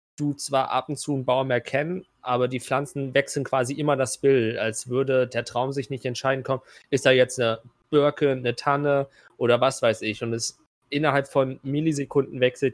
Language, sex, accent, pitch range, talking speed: German, male, German, 125-140 Hz, 195 wpm